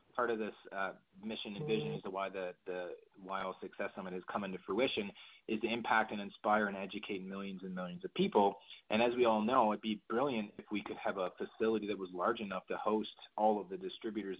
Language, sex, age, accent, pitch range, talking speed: English, male, 30-49, American, 100-115 Hz, 235 wpm